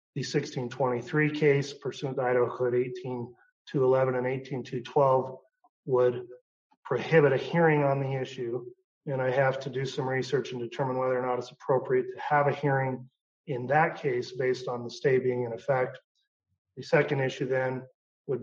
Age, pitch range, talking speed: 40-59, 125-140 Hz, 160 wpm